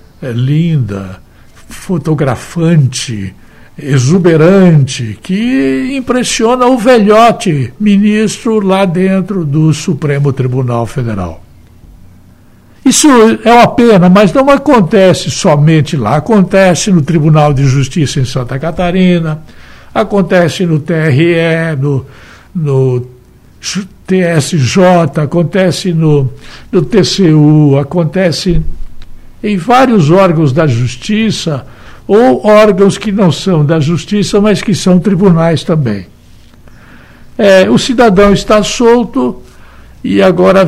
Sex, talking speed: male, 95 wpm